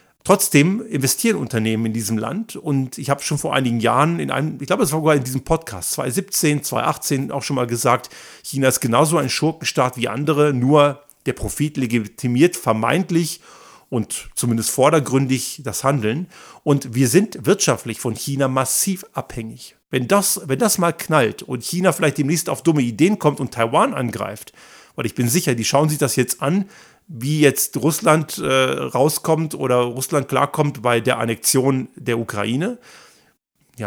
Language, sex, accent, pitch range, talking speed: German, male, German, 125-165 Hz, 170 wpm